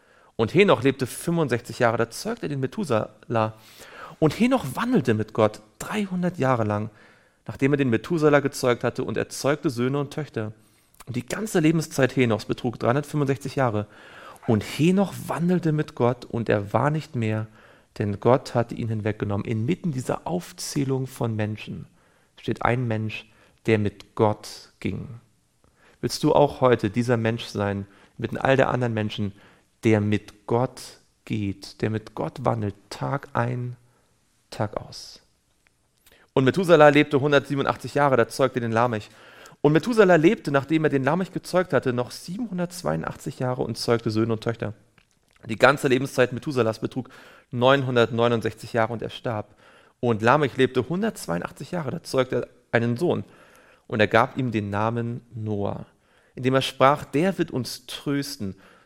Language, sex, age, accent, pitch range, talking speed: German, male, 40-59, German, 110-145 Hz, 150 wpm